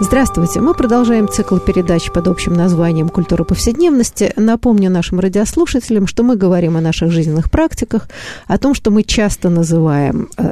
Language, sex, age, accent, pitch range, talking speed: Russian, female, 50-69, native, 175-240 Hz, 150 wpm